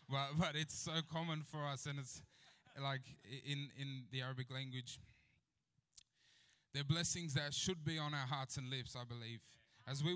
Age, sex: 10-29, male